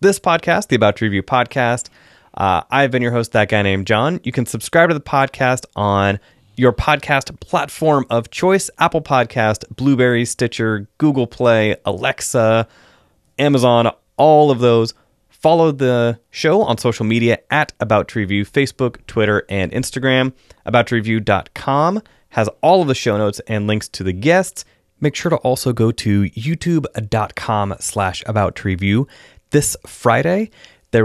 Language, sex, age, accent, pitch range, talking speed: English, male, 30-49, American, 105-135 Hz, 145 wpm